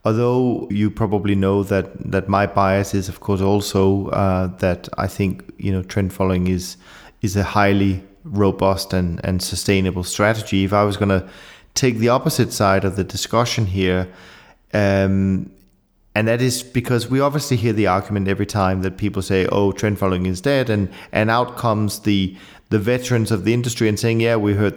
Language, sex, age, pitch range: English, male, 30-49, 95-115 Hz